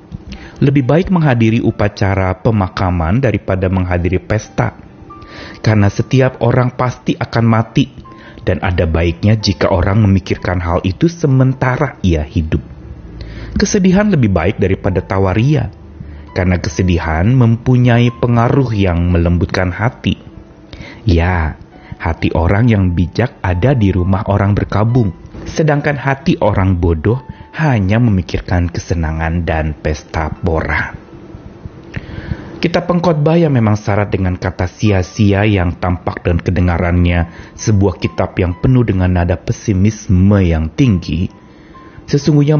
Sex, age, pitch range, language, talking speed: male, 30-49, 90-125 Hz, Indonesian, 110 wpm